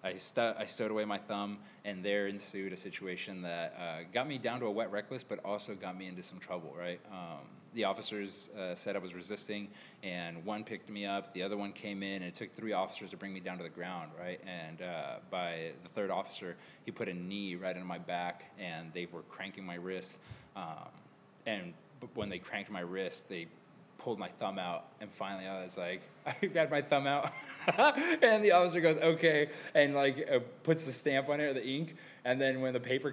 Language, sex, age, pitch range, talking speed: English, male, 20-39, 95-130 Hz, 220 wpm